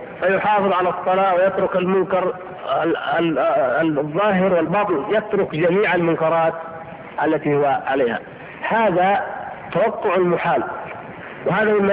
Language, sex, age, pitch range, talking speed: Arabic, male, 50-69, 165-200 Hz, 90 wpm